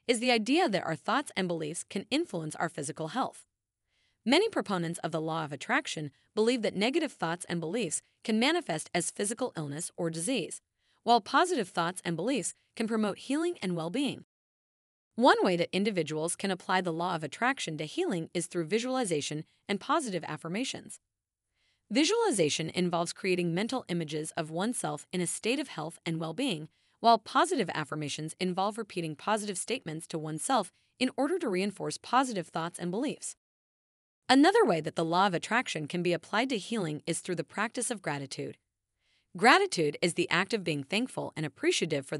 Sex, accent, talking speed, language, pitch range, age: female, American, 170 wpm, English, 160-235 Hz, 30-49